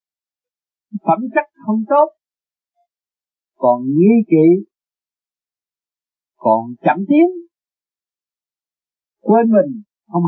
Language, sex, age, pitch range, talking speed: Vietnamese, male, 50-69, 165-240 Hz, 75 wpm